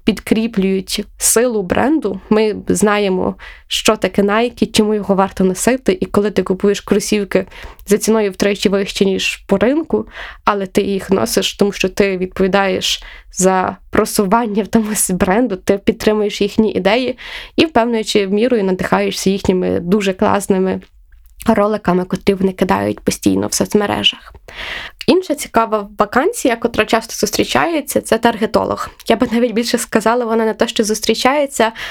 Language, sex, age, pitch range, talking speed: Ukrainian, female, 20-39, 195-230 Hz, 135 wpm